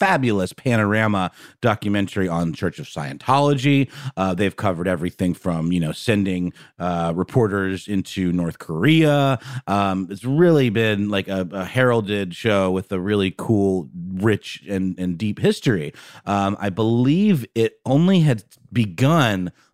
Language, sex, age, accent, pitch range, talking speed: English, male, 30-49, American, 95-130 Hz, 135 wpm